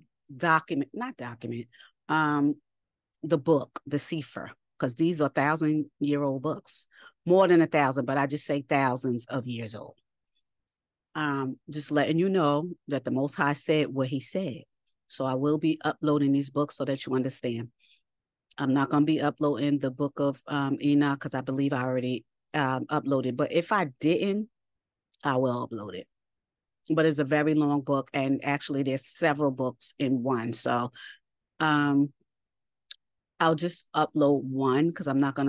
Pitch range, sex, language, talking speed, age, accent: 135-155 Hz, female, English, 170 wpm, 40-59, American